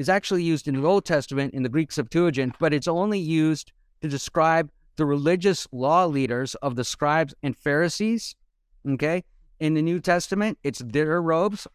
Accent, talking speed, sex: American, 175 wpm, male